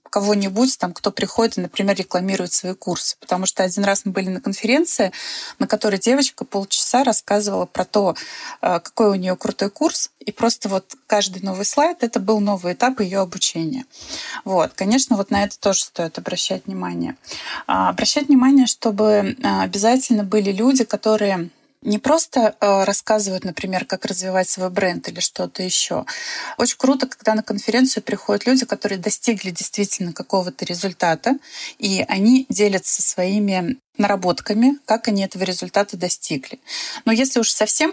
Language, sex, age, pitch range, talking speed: Russian, female, 20-39, 185-230 Hz, 150 wpm